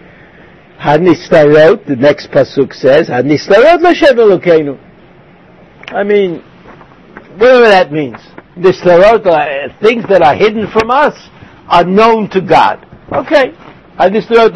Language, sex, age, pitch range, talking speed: English, male, 60-79, 155-200 Hz, 100 wpm